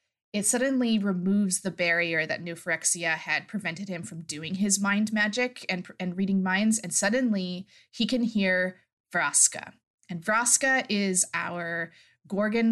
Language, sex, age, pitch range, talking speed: English, female, 20-39, 170-210 Hz, 140 wpm